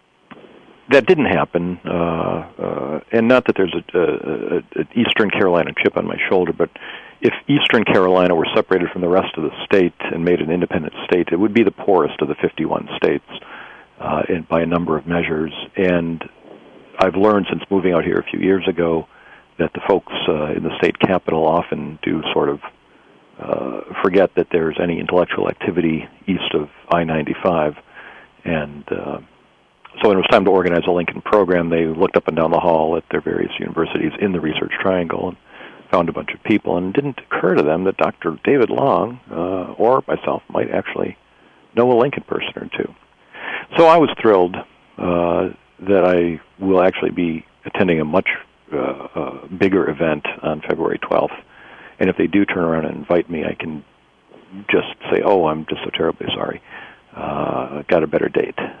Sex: male